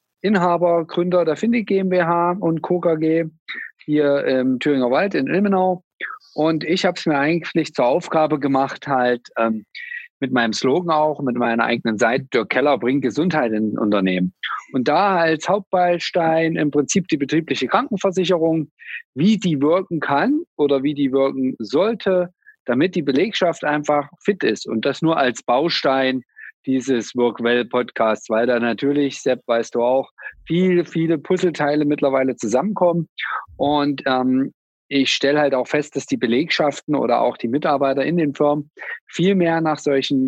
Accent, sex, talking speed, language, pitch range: German, male, 155 wpm, German, 130-170 Hz